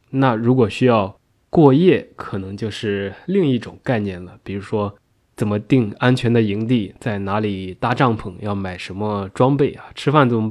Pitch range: 105-125 Hz